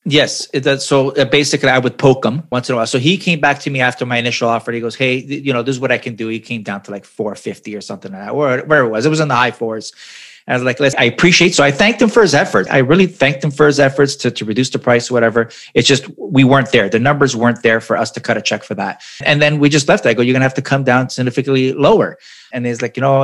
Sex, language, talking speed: male, English, 300 wpm